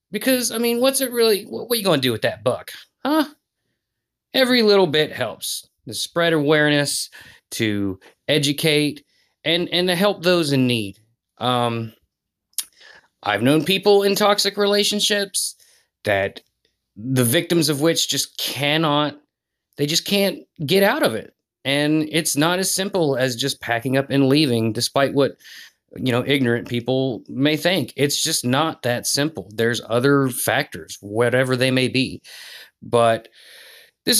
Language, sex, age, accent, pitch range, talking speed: English, male, 30-49, American, 125-175 Hz, 150 wpm